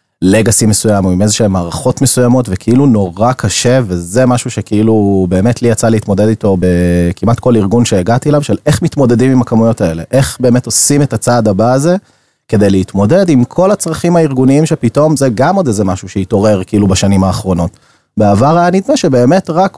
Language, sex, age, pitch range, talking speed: Hebrew, male, 30-49, 105-140 Hz, 175 wpm